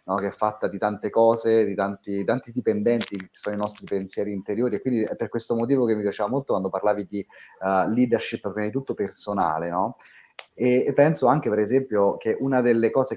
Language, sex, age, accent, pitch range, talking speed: Italian, male, 30-49, native, 100-125 Hz, 215 wpm